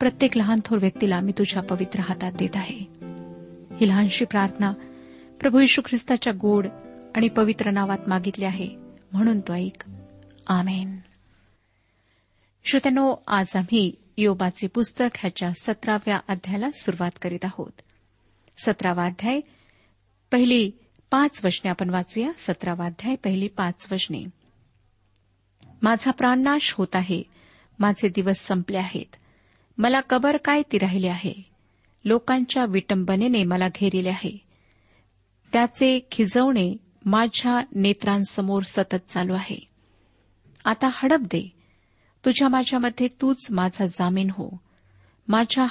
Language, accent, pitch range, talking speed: Marathi, native, 180-235 Hz, 110 wpm